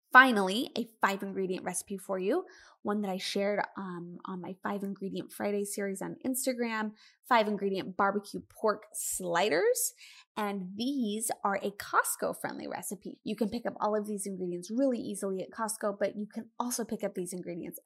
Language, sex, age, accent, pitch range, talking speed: English, female, 20-39, American, 195-245 Hz, 170 wpm